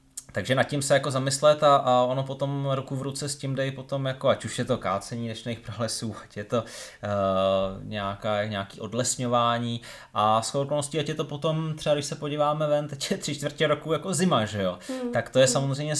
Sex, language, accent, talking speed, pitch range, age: male, Czech, native, 210 wpm, 110-140 Hz, 20-39